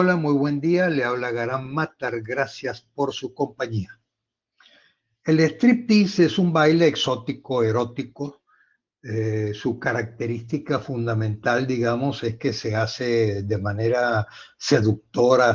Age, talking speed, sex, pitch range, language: 60-79, 120 wpm, male, 110-145 Hz, Spanish